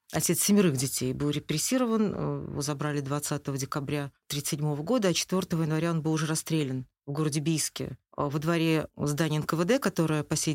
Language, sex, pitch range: Russian, female, 155-190 Hz